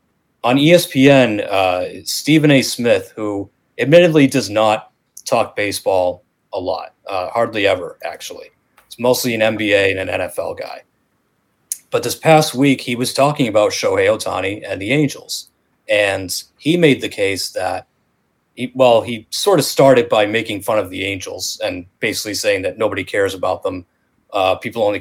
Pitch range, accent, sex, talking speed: 100-135 Hz, American, male, 160 wpm